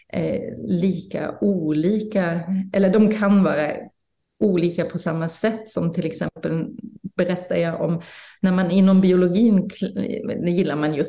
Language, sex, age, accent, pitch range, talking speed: English, female, 30-49, Swedish, 165-200 Hz, 130 wpm